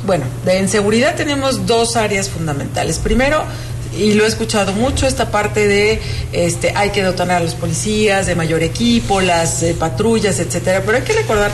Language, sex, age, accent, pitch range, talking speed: Spanish, female, 40-59, Mexican, 125-210 Hz, 175 wpm